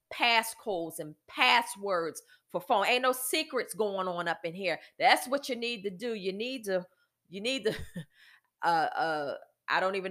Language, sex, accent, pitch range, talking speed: English, female, American, 195-265 Hz, 180 wpm